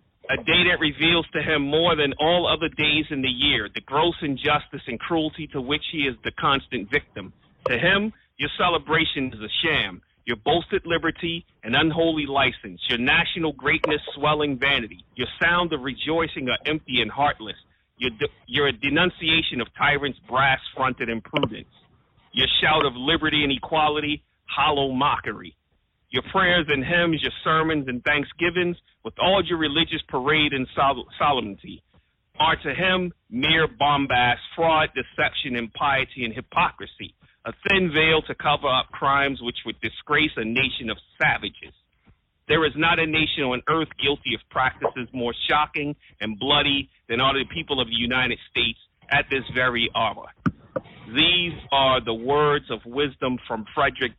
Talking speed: 155 wpm